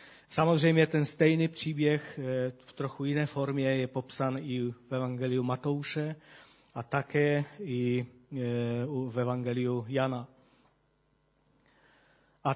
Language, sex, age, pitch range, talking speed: Czech, male, 40-59, 135-170 Hz, 100 wpm